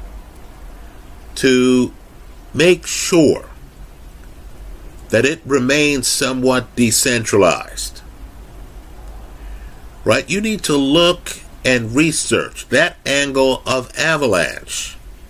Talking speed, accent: 75 wpm, American